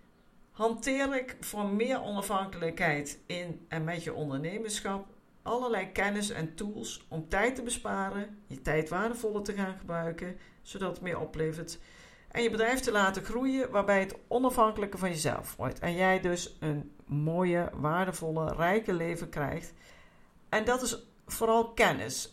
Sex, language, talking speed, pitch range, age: female, Dutch, 145 wpm, 165-230 Hz, 50-69